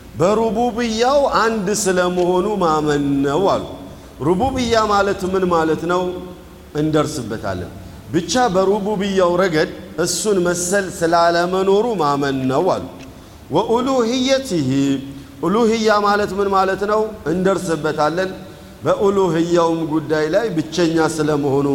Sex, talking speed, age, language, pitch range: male, 90 wpm, 50-69, Amharic, 155-190 Hz